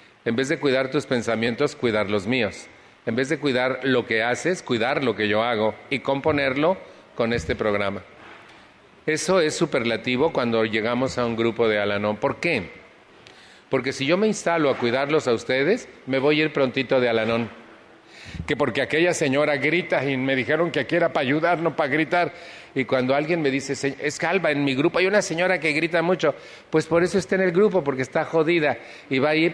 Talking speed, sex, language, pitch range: 205 wpm, male, Spanish, 125-165 Hz